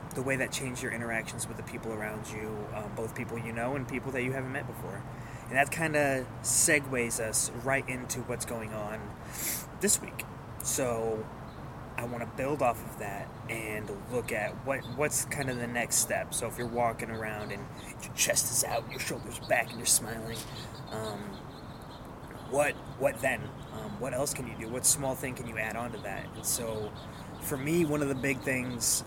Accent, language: American, English